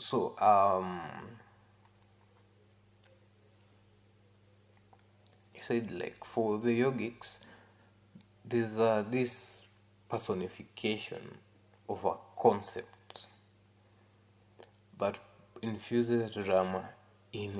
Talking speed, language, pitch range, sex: 70 wpm, Swahili, 100-115 Hz, male